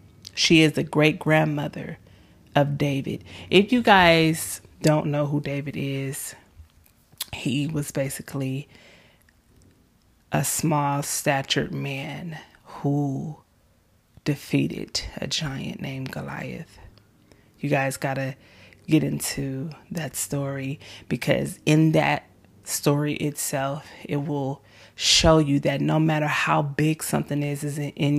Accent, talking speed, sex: American, 115 wpm, female